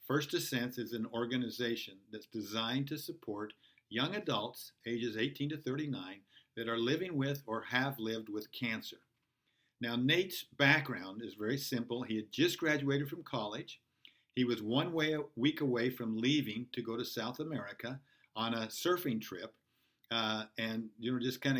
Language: English